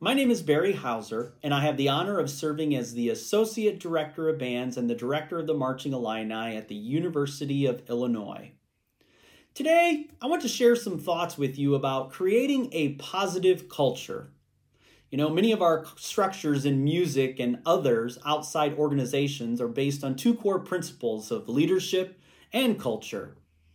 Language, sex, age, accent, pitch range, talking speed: English, male, 30-49, American, 130-185 Hz, 165 wpm